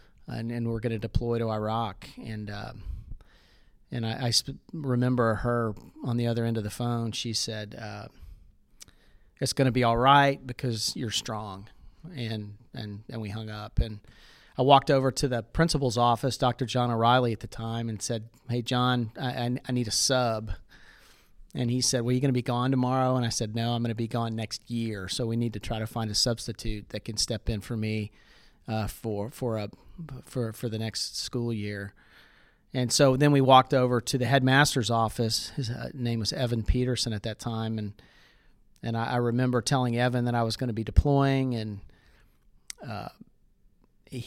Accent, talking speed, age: American, 195 wpm, 40-59